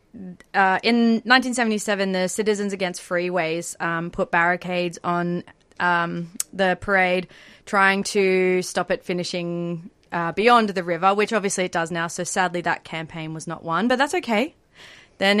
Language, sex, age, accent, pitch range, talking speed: English, female, 20-39, Australian, 175-200 Hz, 150 wpm